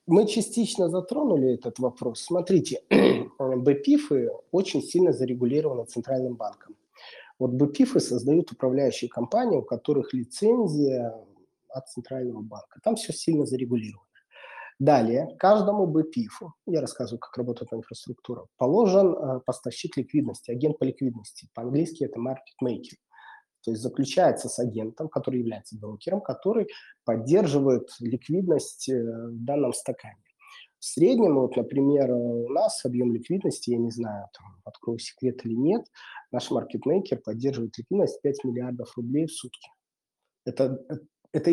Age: 20-39